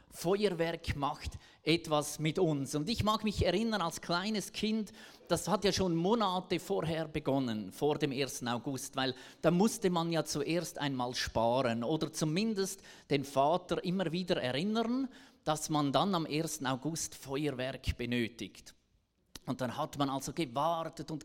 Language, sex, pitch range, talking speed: German, male, 145-195 Hz, 155 wpm